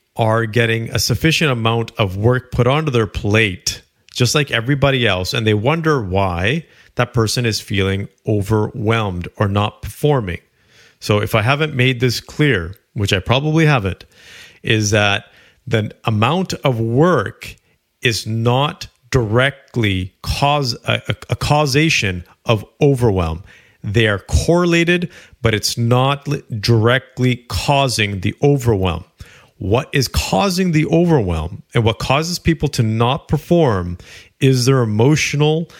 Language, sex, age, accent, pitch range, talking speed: English, male, 40-59, American, 105-145 Hz, 130 wpm